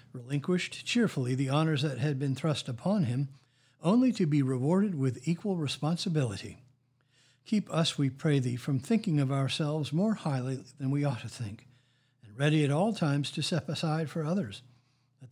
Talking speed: 170 wpm